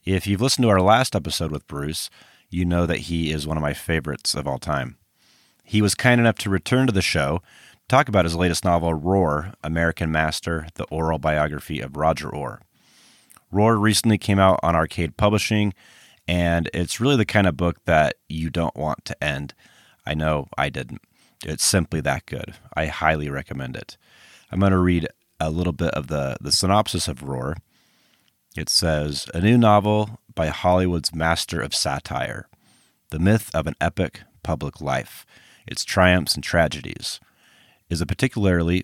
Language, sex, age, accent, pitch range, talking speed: English, male, 30-49, American, 80-100 Hz, 175 wpm